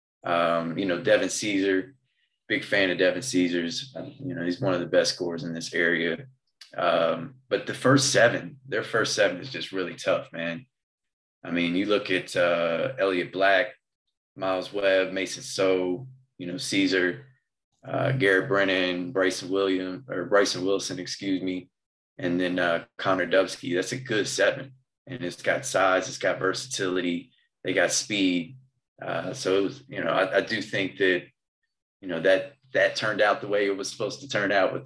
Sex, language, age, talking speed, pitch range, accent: male, English, 20-39, 175 wpm, 90-105 Hz, American